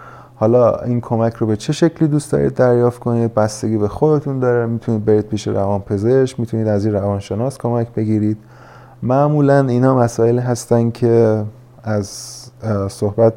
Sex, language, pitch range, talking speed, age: male, Persian, 105-125 Hz, 150 wpm, 30-49